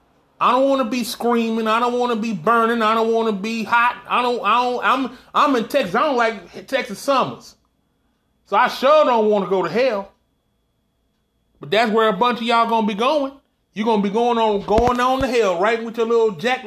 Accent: American